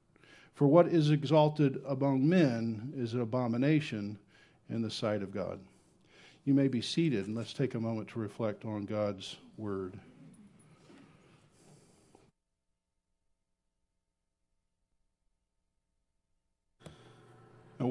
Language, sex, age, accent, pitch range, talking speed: English, male, 50-69, American, 115-145 Hz, 95 wpm